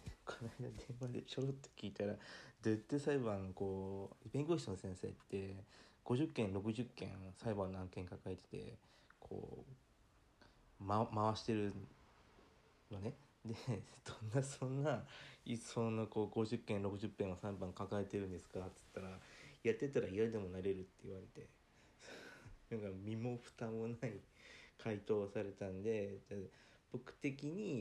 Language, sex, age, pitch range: Japanese, male, 40-59, 95-115 Hz